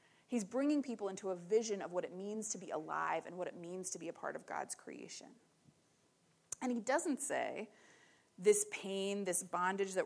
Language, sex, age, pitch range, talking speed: English, female, 30-49, 180-230 Hz, 195 wpm